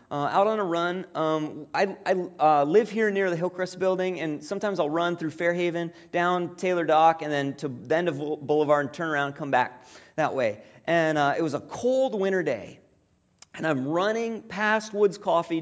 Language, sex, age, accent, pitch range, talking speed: English, male, 30-49, American, 155-205 Hz, 205 wpm